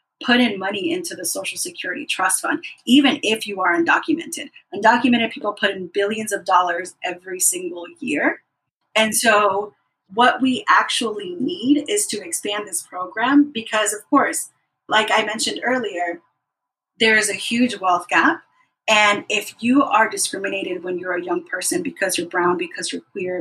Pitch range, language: 195-255 Hz, English